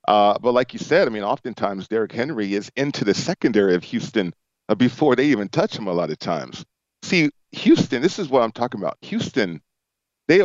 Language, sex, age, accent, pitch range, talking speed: English, male, 40-59, American, 100-125 Hz, 200 wpm